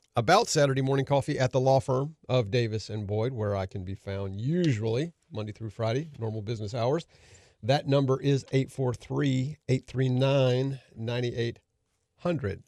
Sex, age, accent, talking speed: male, 50-69, American, 135 wpm